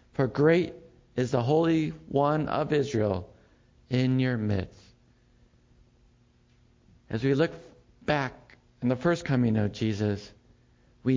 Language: English